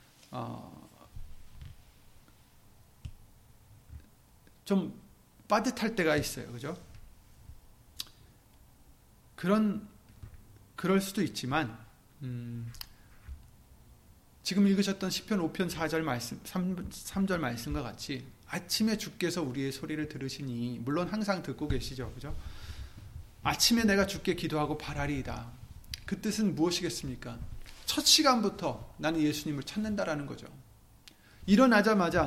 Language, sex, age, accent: Korean, male, 30-49, native